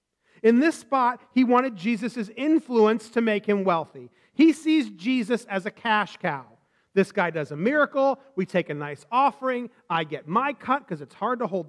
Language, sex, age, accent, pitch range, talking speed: English, male, 40-59, American, 185-250 Hz, 190 wpm